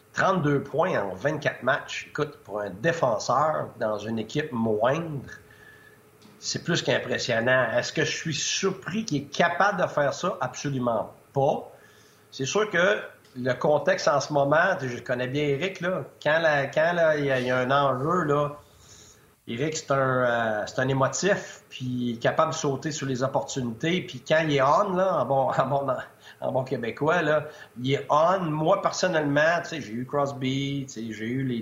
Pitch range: 120-155 Hz